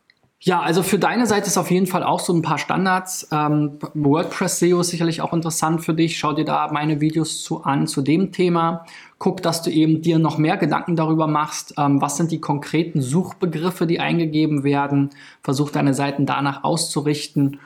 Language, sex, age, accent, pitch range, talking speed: German, male, 20-39, German, 145-170 Hz, 195 wpm